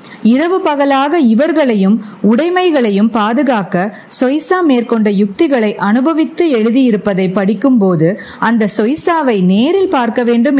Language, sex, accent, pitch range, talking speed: Tamil, female, native, 205-290 Hz, 95 wpm